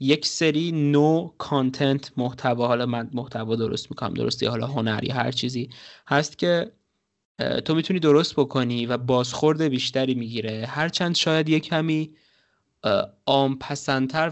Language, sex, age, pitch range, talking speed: Persian, male, 20-39, 125-150 Hz, 125 wpm